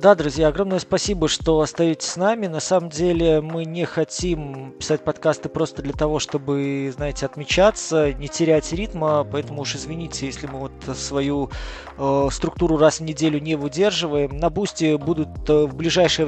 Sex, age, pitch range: male, 20-39, 140-165 Hz